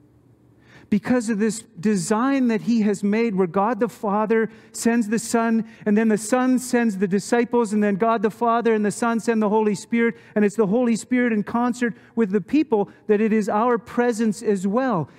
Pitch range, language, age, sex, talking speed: 175-230 Hz, English, 40-59, male, 200 wpm